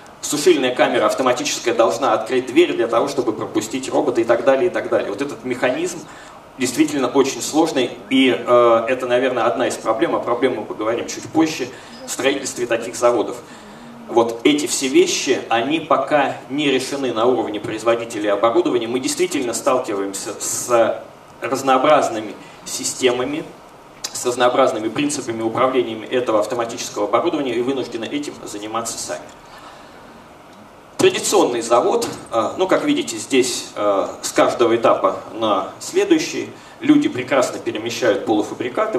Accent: native